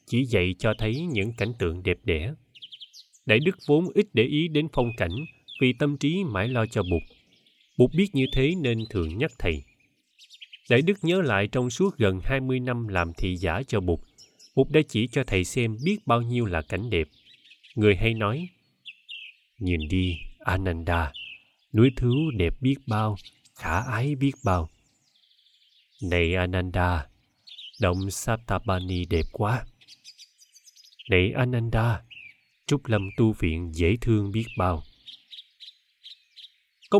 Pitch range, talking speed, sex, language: 95-140 Hz, 150 wpm, male, Vietnamese